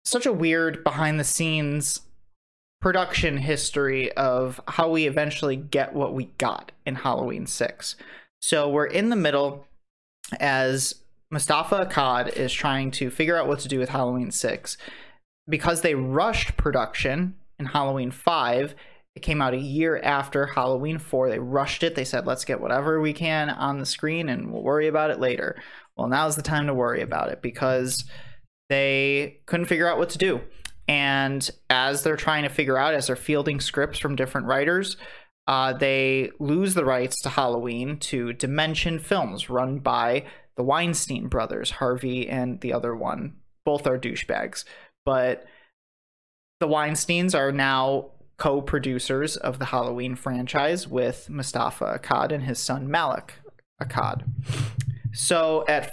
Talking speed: 155 wpm